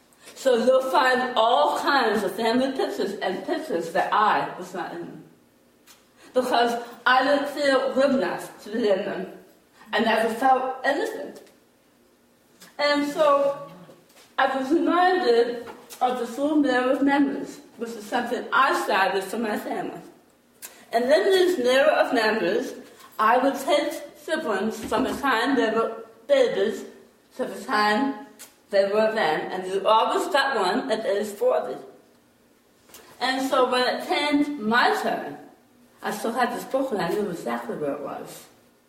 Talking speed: 150 wpm